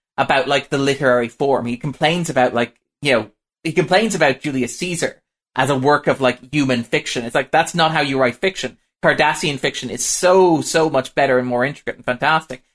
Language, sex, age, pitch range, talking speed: English, male, 20-39, 125-165 Hz, 200 wpm